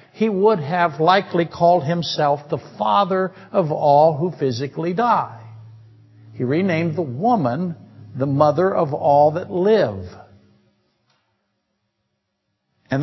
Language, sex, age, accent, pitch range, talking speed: English, male, 60-79, American, 140-180 Hz, 110 wpm